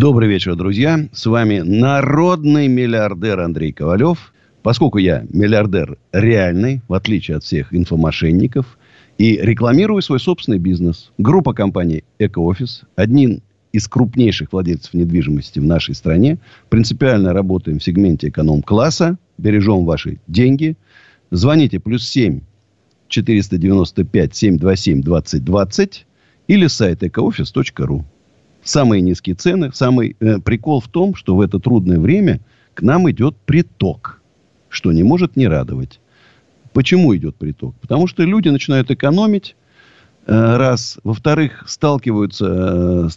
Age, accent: 50-69, native